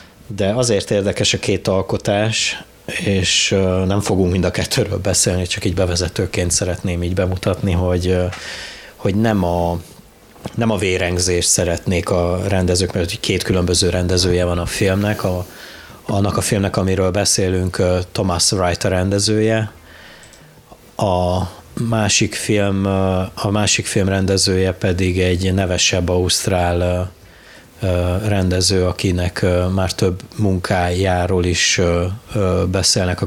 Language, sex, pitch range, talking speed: Hungarian, male, 90-105 Hz, 115 wpm